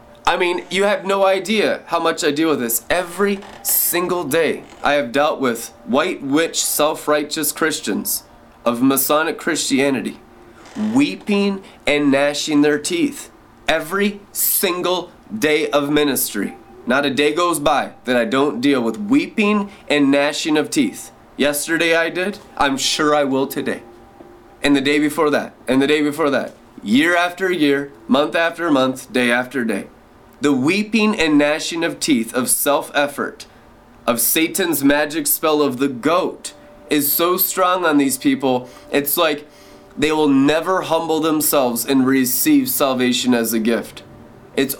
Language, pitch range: English, 140-180 Hz